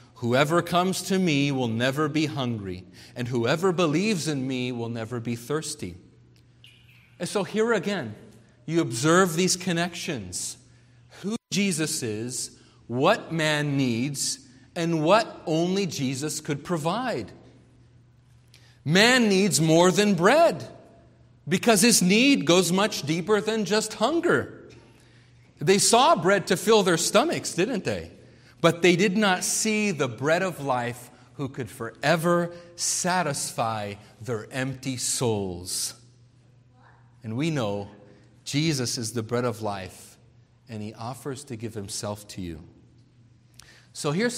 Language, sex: English, male